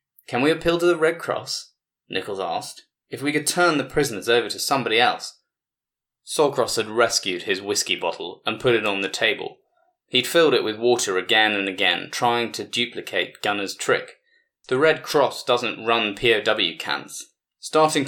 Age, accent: 20-39, British